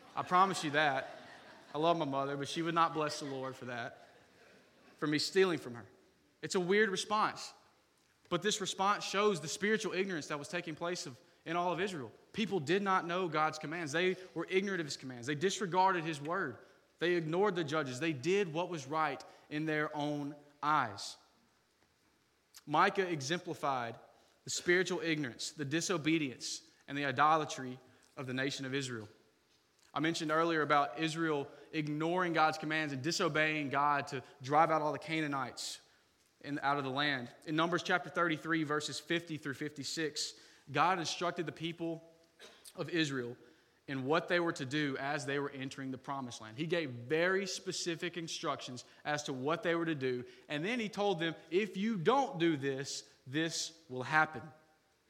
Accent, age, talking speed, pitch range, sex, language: American, 20-39, 170 wpm, 145-175 Hz, male, English